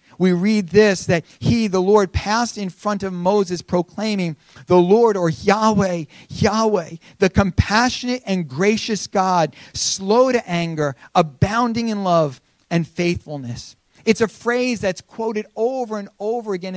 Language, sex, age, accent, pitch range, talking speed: English, male, 40-59, American, 170-210 Hz, 145 wpm